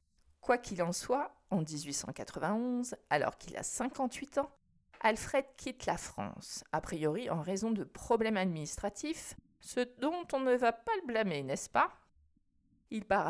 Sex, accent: female, French